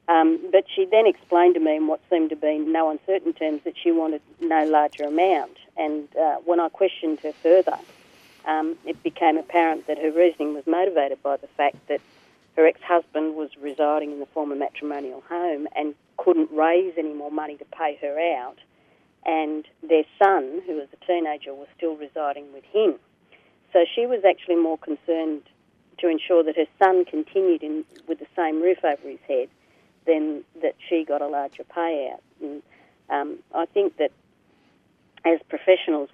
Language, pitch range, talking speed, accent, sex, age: English, 150-175 Hz, 175 wpm, Australian, female, 40-59